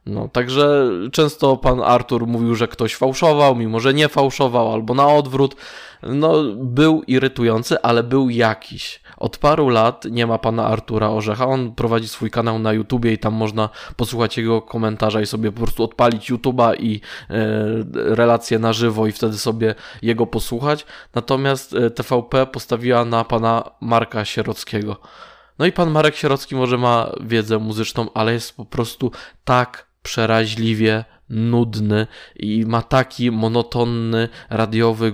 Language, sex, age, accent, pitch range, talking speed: Polish, male, 20-39, native, 115-125 Hz, 145 wpm